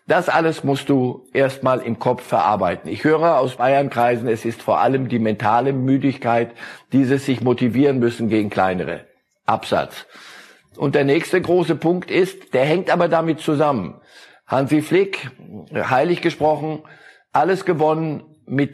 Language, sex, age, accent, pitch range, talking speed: German, male, 50-69, German, 130-160 Hz, 145 wpm